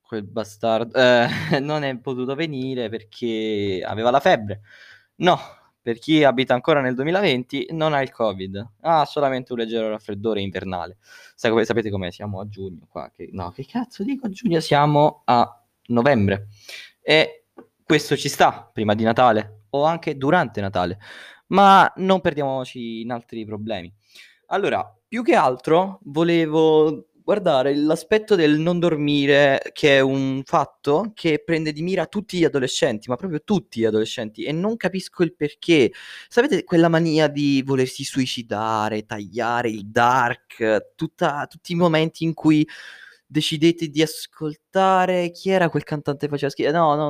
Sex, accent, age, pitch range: male, native, 20-39, 115-160 Hz